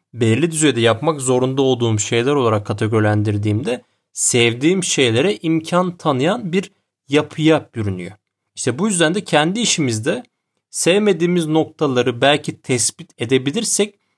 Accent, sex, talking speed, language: native, male, 110 wpm, Turkish